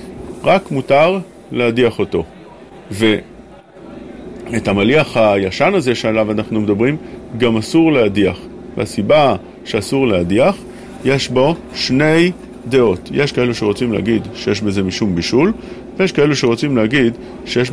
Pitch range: 110-140 Hz